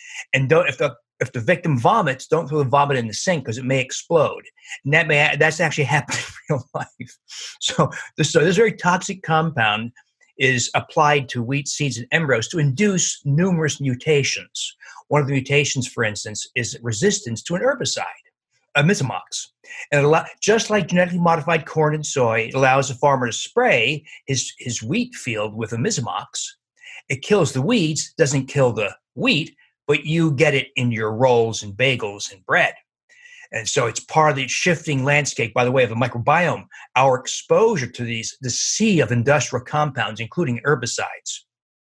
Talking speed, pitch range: 185 wpm, 125-165 Hz